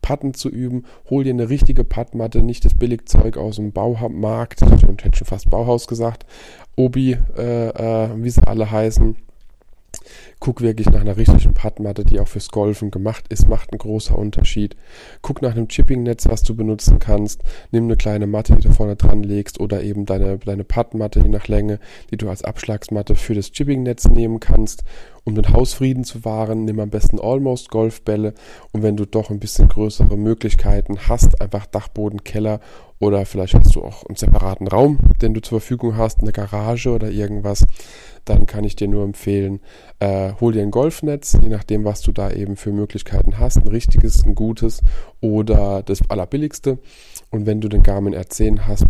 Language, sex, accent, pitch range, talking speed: German, male, German, 100-115 Hz, 185 wpm